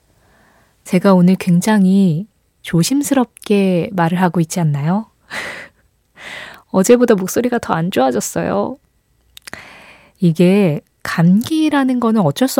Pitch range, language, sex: 165-220 Hz, Korean, female